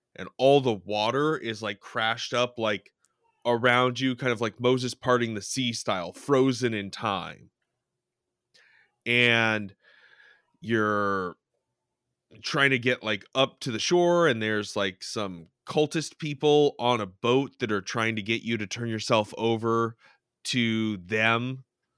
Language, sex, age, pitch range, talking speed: English, male, 30-49, 105-125 Hz, 145 wpm